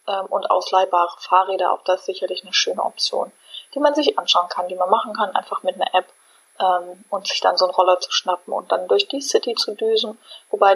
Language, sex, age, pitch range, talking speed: German, female, 20-39, 190-270 Hz, 225 wpm